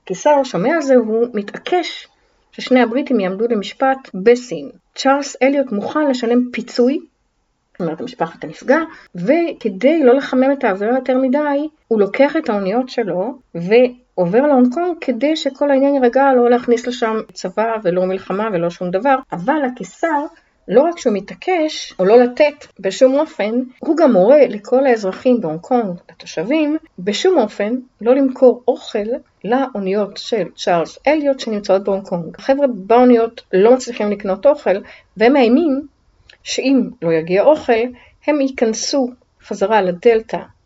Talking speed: 135 wpm